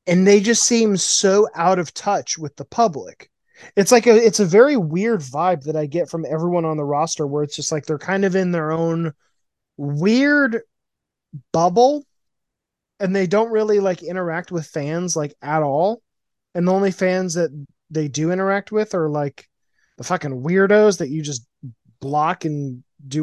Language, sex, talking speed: English, male, 180 wpm